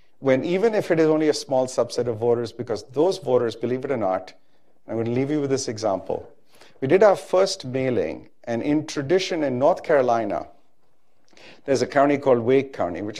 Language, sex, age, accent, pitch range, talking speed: English, male, 50-69, Indian, 120-155 Hz, 200 wpm